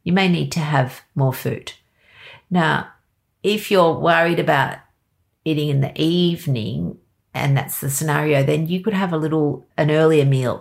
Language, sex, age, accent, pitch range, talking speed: English, female, 50-69, Australian, 135-170 Hz, 165 wpm